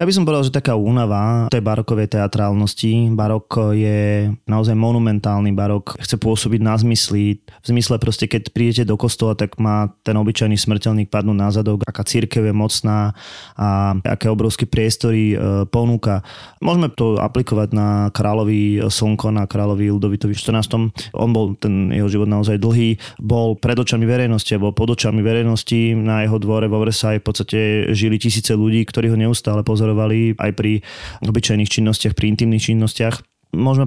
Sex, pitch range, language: male, 105-115 Hz, Slovak